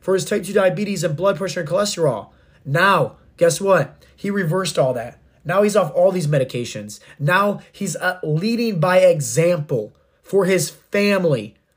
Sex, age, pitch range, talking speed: male, 20-39, 150-195 Hz, 165 wpm